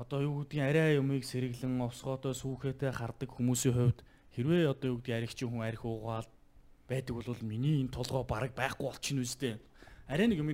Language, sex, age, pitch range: Korean, male, 20-39, 120-150 Hz